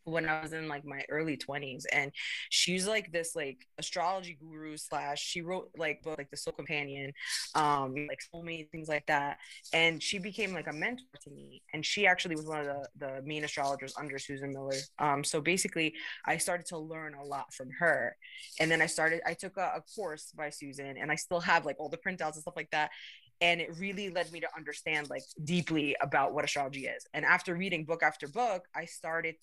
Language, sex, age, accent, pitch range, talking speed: English, female, 20-39, American, 150-175 Hz, 215 wpm